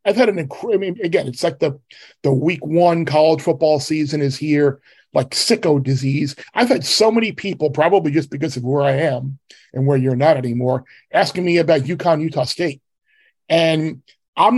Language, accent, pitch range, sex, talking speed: English, American, 140-170 Hz, male, 185 wpm